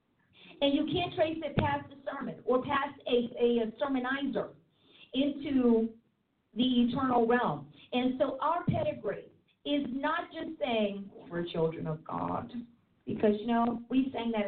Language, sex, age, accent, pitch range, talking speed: English, female, 40-59, American, 220-290 Hz, 150 wpm